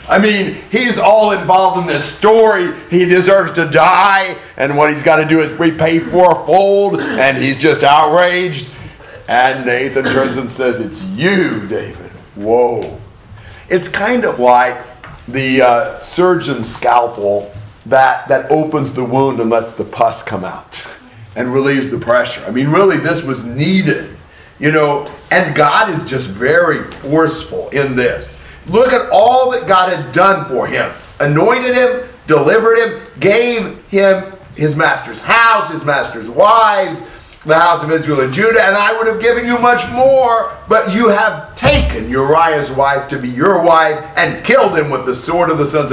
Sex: male